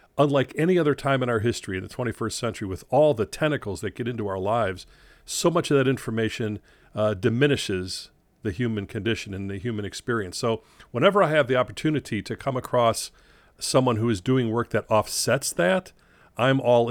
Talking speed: 190 wpm